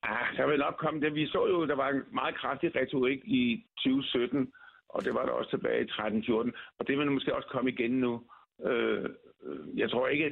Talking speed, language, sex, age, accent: 205 wpm, Danish, male, 60-79, native